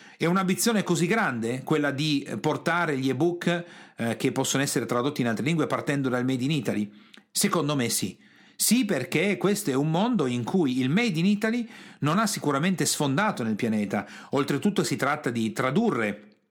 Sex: male